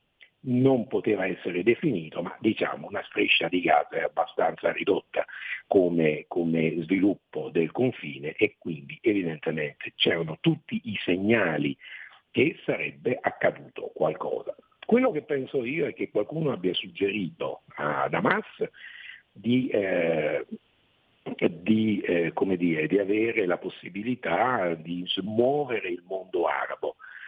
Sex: male